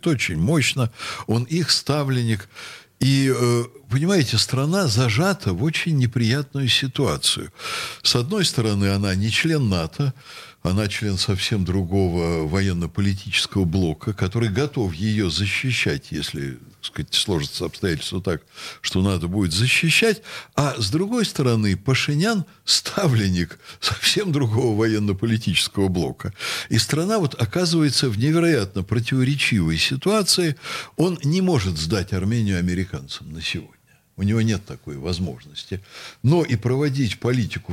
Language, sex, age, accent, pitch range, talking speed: Russian, male, 60-79, native, 100-145 Hz, 115 wpm